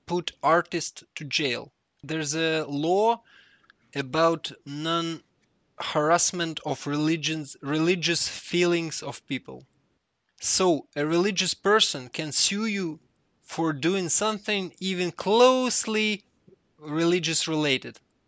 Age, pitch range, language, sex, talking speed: 20-39, 155-195 Hz, English, male, 90 wpm